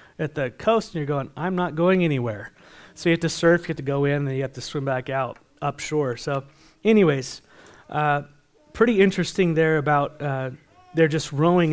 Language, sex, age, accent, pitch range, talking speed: English, male, 30-49, American, 130-160 Hz, 205 wpm